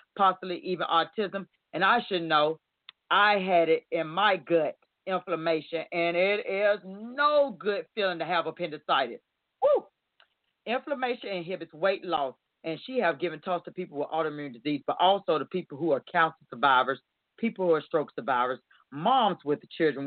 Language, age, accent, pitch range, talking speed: English, 40-59, American, 160-205 Hz, 160 wpm